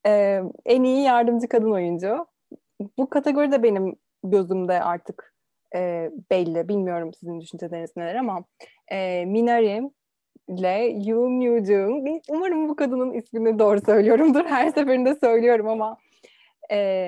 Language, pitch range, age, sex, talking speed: Turkish, 185-230 Hz, 20-39, female, 125 wpm